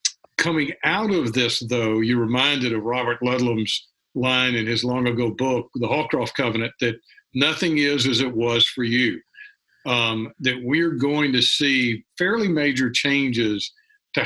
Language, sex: English, male